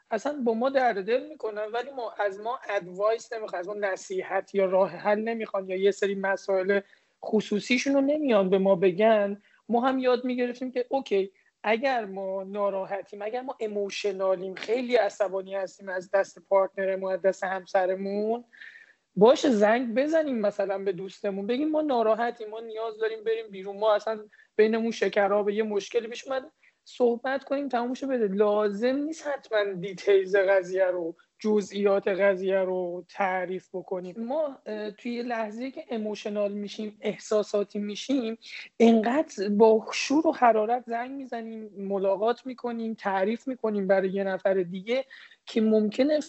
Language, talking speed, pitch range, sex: Persian, 145 wpm, 195-240 Hz, male